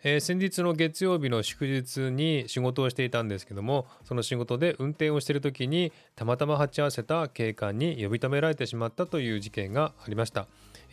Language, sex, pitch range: Japanese, male, 105-145 Hz